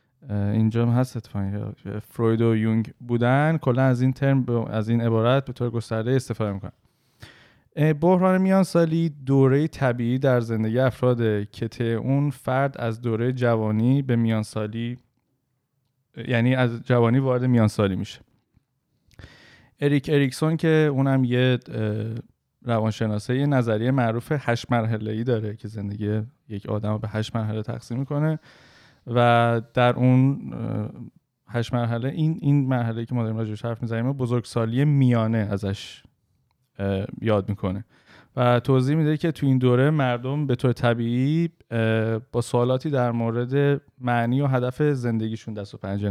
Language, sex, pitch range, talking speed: Persian, male, 110-130 Hz, 135 wpm